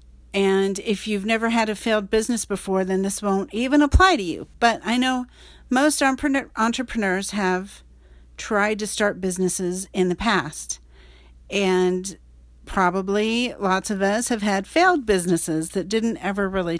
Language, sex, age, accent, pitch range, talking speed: English, female, 50-69, American, 170-225 Hz, 150 wpm